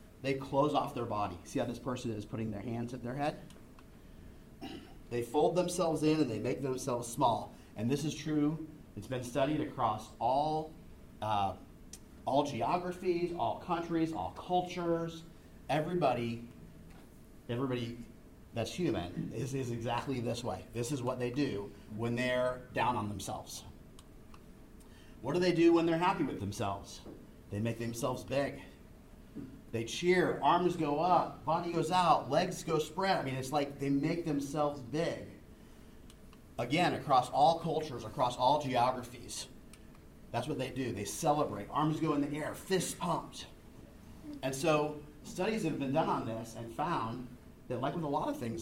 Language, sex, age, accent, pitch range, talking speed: English, male, 30-49, American, 115-155 Hz, 160 wpm